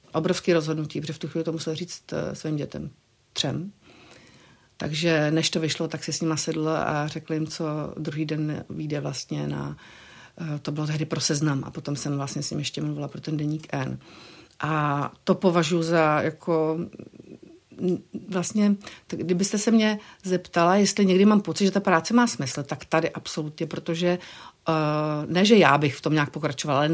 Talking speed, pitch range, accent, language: 180 wpm, 150-170 Hz, native, Czech